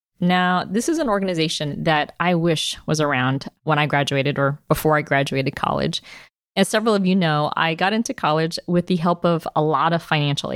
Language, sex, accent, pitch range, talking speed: English, female, American, 150-185 Hz, 200 wpm